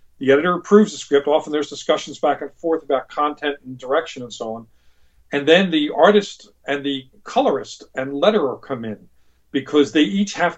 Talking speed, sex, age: 185 wpm, male, 40-59